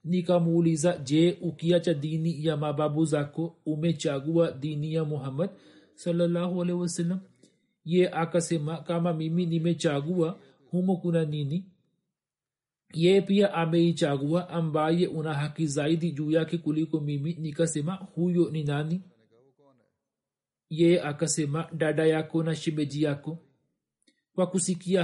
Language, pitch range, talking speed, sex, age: Swahili, 155-175 Hz, 115 wpm, male, 40-59